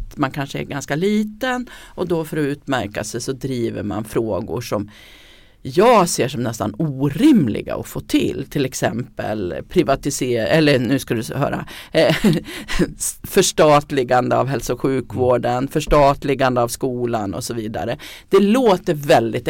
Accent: native